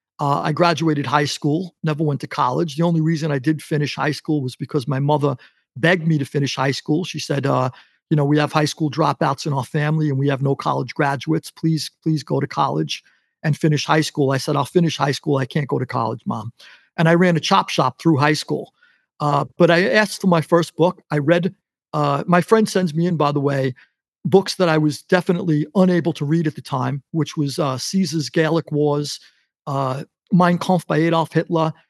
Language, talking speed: English, 220 wpm